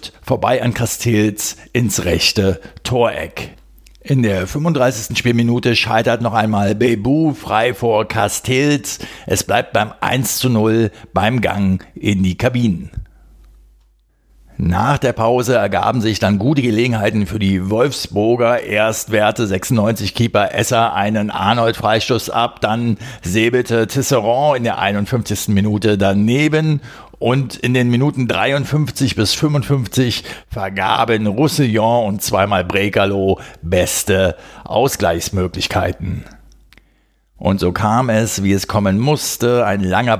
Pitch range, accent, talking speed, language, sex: 95-120 Hz, German, 115 wpm, German, male